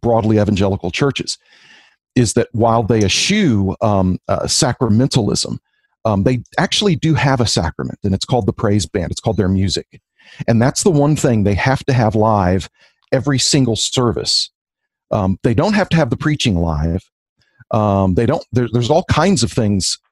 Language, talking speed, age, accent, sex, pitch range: English, 175 wpm, 40-59, American, male, 105-135 Hz